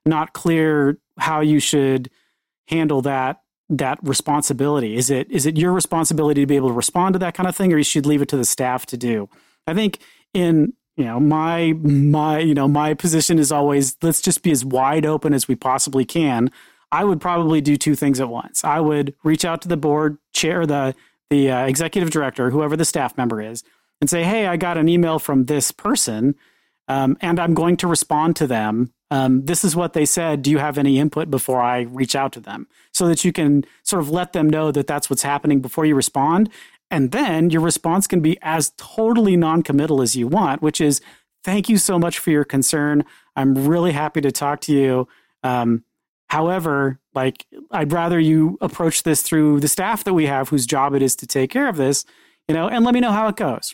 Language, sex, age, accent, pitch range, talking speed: English, male, 40-59, American, 140-170 Hz, 220 wpm